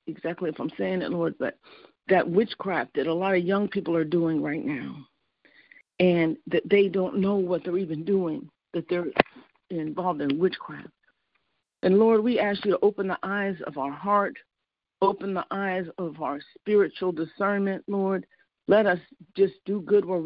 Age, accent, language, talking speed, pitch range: 50-69, American, English, 175 wpm, 175-210 Hz